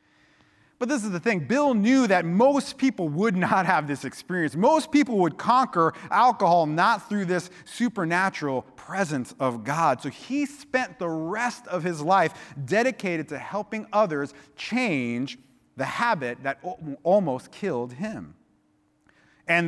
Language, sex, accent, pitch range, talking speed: English, male, American, 145-205 Hz, 145 wpm